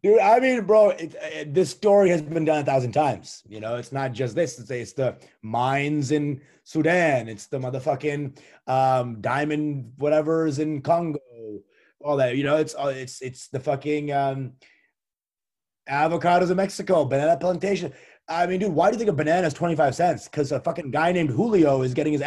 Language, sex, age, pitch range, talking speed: English, male, 30-49, 130-175 Hz, 190 wpm